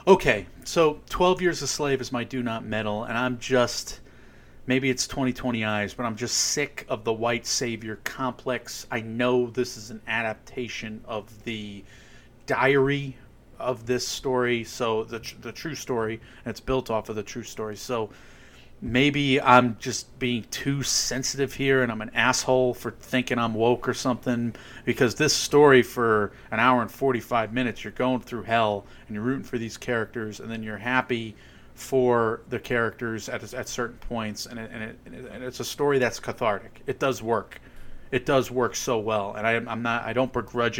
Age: 30-49